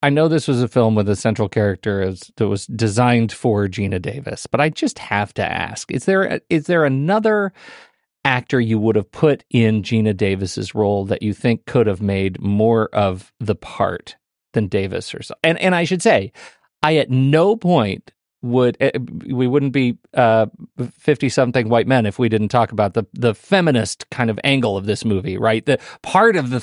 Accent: American